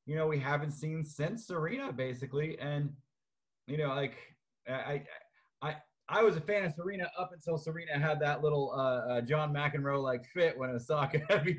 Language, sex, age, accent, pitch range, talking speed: English, male, 30-49, American, 120-150 Hz, 175 wpm